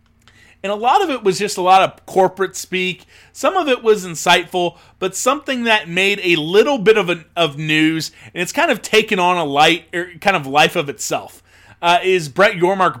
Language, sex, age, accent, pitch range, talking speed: English, male, 30-49, American, 155-200 Hz, 210 wpm